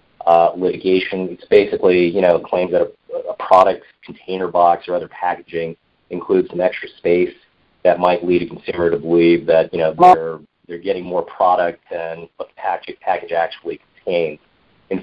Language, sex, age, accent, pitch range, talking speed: English, male, 30-49, American, 90-105 Hz, 170 wpm